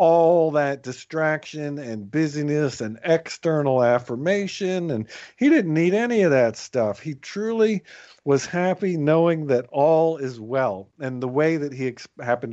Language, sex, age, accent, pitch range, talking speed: English, male, 50-69, American, 120-155 Hz, 150 wpm